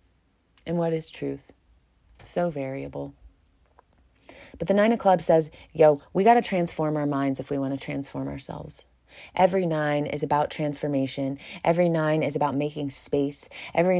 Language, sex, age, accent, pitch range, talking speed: English, female, 30-49, American, 150-195 Hz, 160 wpm